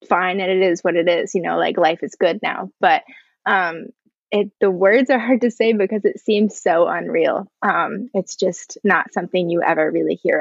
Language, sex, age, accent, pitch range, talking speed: English, female, 20-39, American, 190-235 Hz, 215 wpm